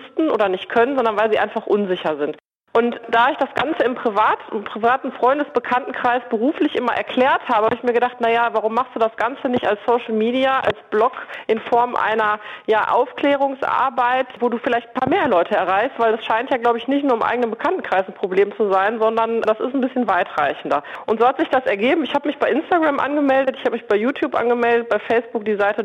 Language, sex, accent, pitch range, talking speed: German, female, German, 210-250 Hz, 215 wpm